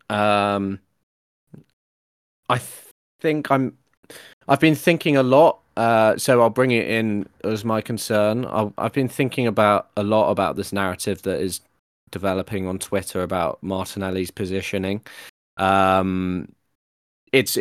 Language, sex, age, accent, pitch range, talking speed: English, male, 20-39, British, 90-110 Hz, 135 wpm